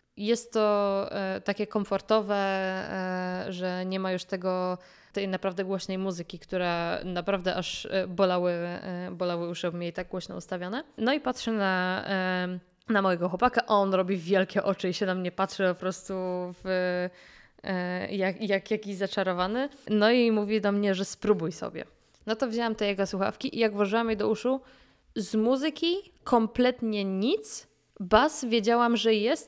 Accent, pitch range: native, 190-225 Hz